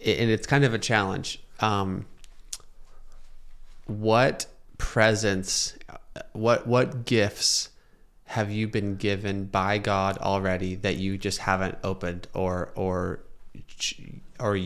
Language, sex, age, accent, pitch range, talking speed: English, male, 20-39, American, 95-110 Hz, 110 wpm